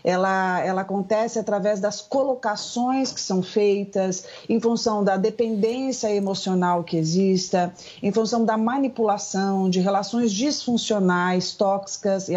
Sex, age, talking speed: female, 40-59, 120 wpm